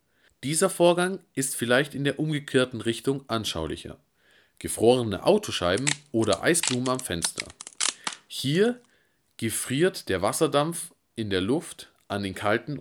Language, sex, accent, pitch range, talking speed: German, male, German, 100-150 Hz, 115 wpm